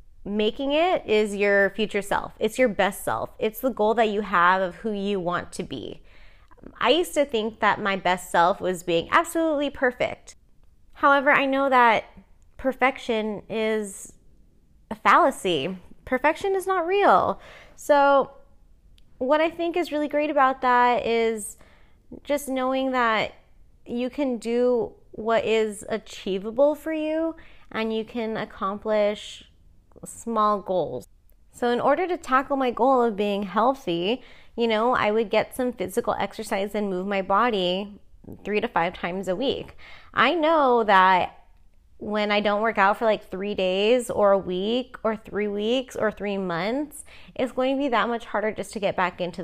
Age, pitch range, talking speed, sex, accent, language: 20-39, 200-260 Hz, 165 wpm, female, American, English